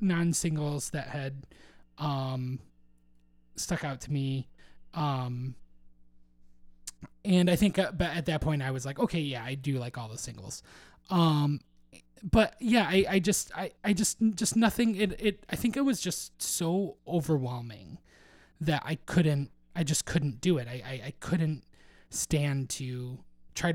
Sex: male